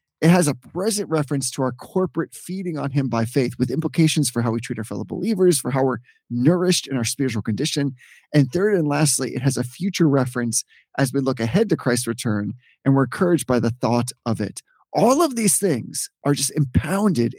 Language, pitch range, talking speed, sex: English, 130-180 Hz, 210 wpm, male